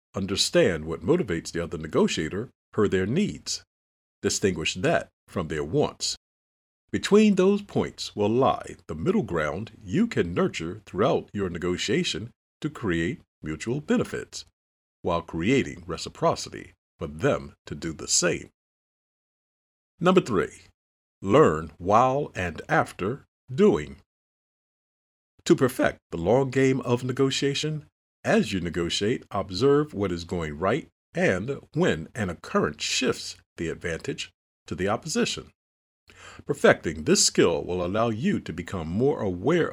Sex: male